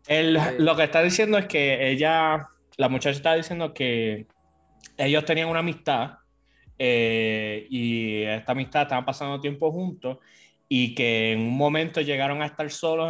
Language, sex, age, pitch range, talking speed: English, male, 20-39, 115-150 Hz, 155 wpm